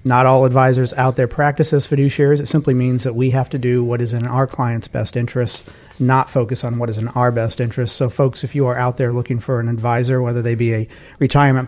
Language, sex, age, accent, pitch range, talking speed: English, male, 40-59, American, 120-140 Hz, 245 wpm